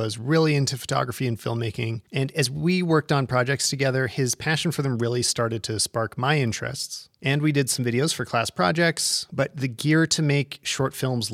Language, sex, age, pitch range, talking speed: English, male, 30-49, 115-140 Hz, 200 wpm